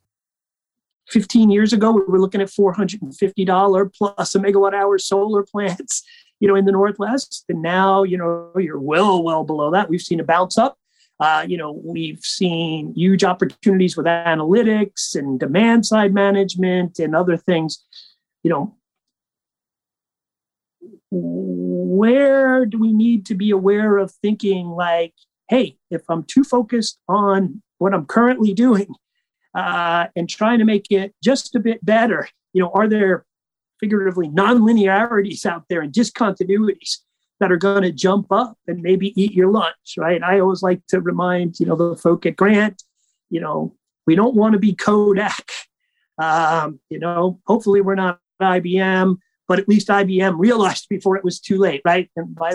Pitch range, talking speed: 175-210 Hz, 160 wpm